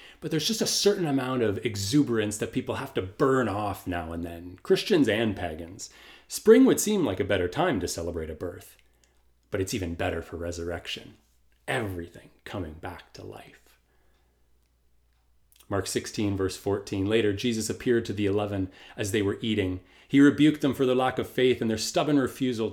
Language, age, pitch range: English, 30-49, 95-130 Hz